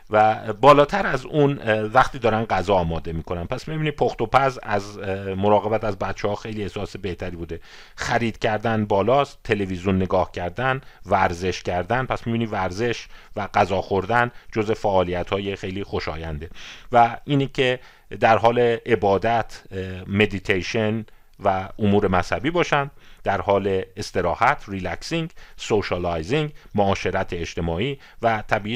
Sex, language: male, Persian